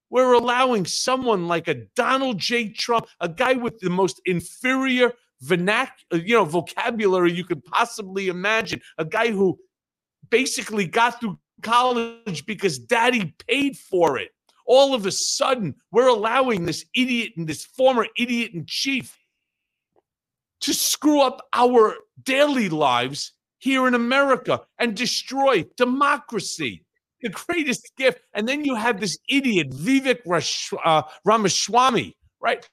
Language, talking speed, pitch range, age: English, 130 wpm, 190-255 Hz, 40-59